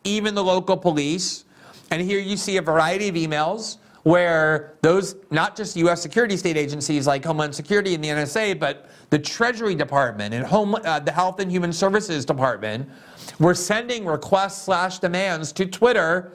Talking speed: 165 wpm